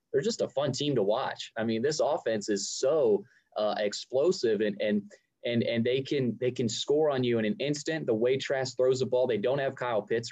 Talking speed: 235 wpm